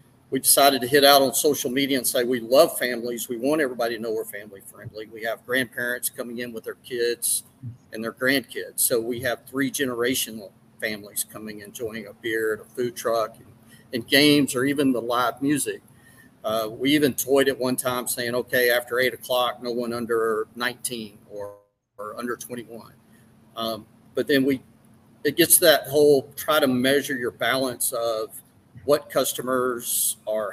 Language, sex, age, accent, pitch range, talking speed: English, male, 40-59, American, 115-140 Hz, 180 wpm